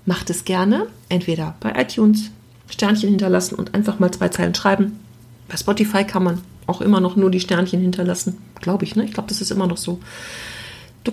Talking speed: 195 wpm